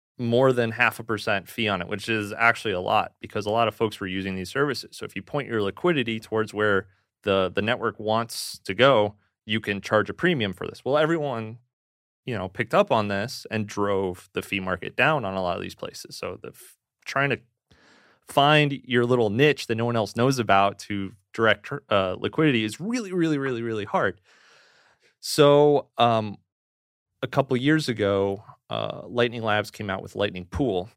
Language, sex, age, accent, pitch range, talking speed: English, male, 30-49, American, 100-125 Hz, 195 wpm